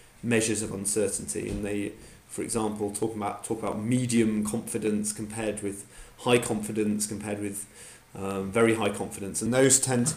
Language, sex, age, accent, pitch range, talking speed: English, male, 30-49, British, 105-120 Hz, 160 wpm